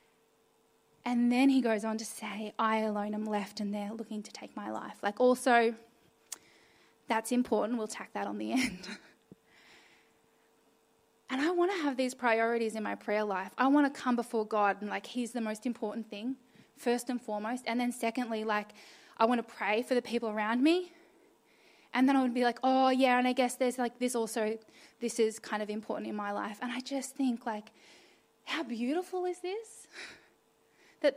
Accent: Australian